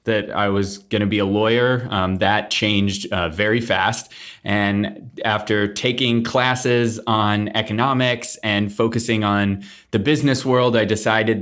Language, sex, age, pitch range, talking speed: English, male, 20-39, 100-115 Hz, 145 wpm